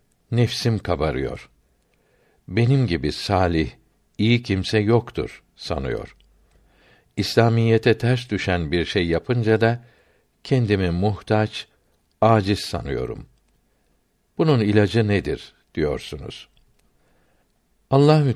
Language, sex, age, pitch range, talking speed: Turkish, male, 60-79, 90-115 Hz, 80 wpm